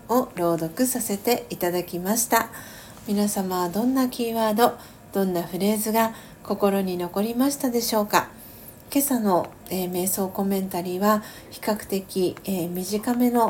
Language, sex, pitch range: Japanese, female, 185-220 Hz